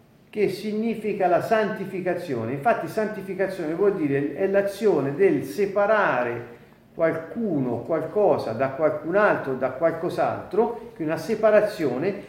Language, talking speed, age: Italian, 110 wpm, 40-59